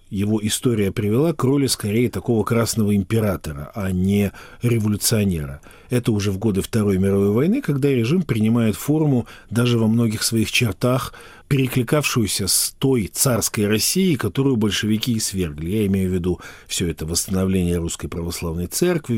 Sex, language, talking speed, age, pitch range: male, Russian, 145 wpm, 40-59, 95-120 Hz